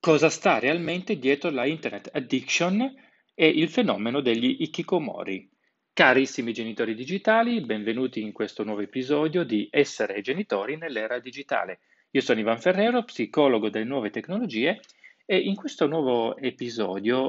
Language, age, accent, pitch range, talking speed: Italian, 30-49, native, 115-185 Hz, 130 wpm